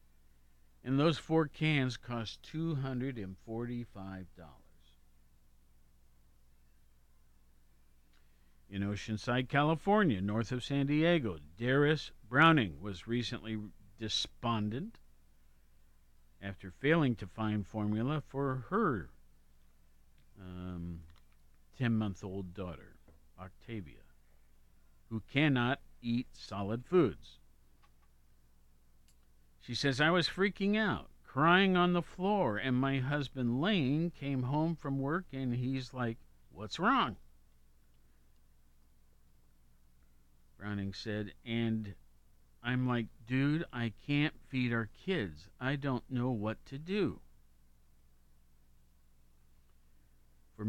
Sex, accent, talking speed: male, American, 90 wpm